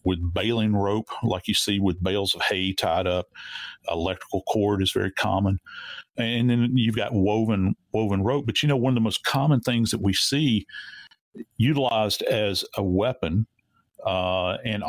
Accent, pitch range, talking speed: American, 100-130 Hz, 170 wpm